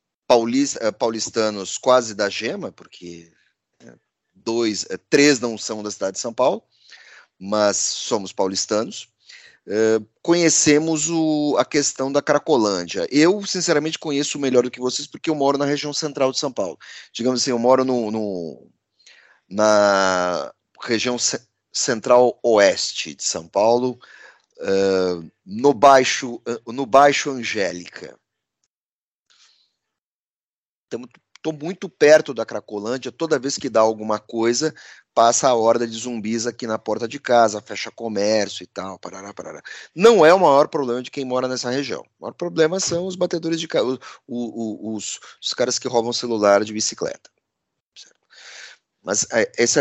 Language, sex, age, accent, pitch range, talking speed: Portuguese, male, 30-49, Brazilian, 110-150 Hz, 130 wpm